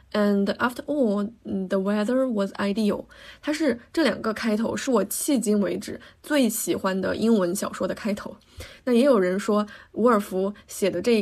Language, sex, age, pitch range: Chinese, female, 20-39, 195-235 Hz